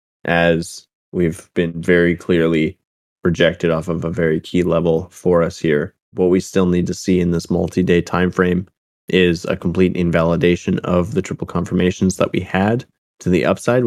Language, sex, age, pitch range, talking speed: English, male, 20-39, 85-90 Hz, 175 wpm